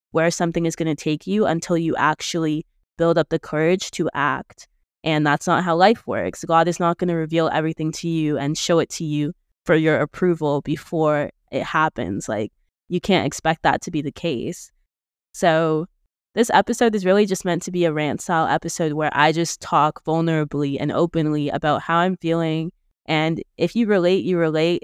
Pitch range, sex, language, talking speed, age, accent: 150-170 Hz, female, English, 195 wpm, 20-39, American